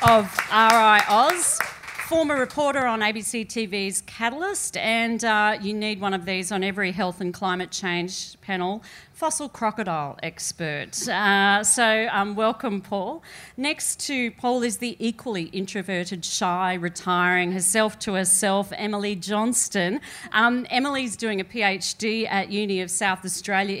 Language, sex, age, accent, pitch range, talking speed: English, female, 40-59, Australian, 190-225 Hz, 135 wpm